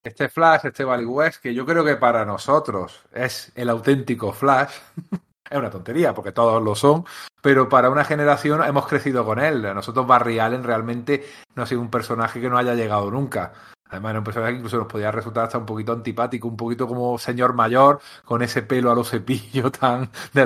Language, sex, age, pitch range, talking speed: Spanish, male, 30-49, 115-145 Hz, 205 wpm